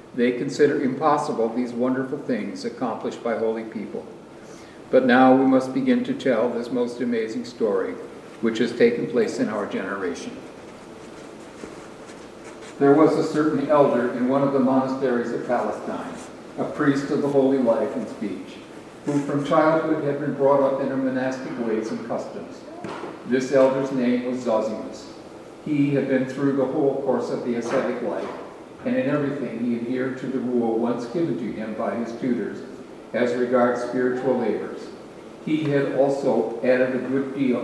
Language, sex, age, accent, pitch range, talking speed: English, male, 50-69, American, 125-145 Hz, 165 wpm